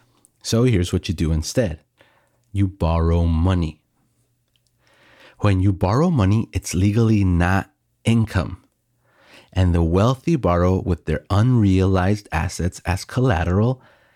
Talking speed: 115 wpm